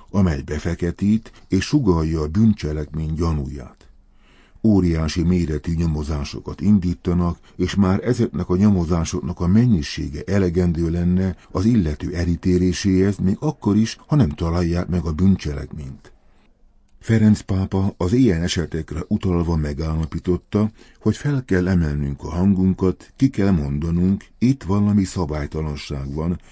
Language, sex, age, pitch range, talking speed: Hungarian, male, 50-69, 80-100 Hz, 120 wpm